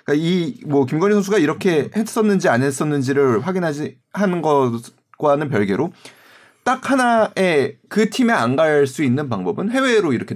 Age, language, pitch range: 30-49, Korean, 125-195 Hz